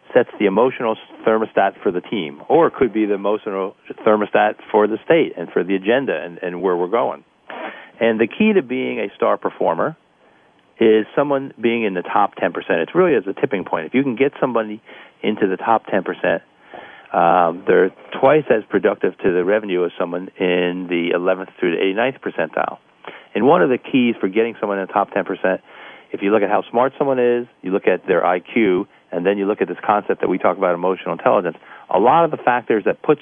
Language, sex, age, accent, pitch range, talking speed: English, male, 40-59, American, 95-115 Hz, 215 wpm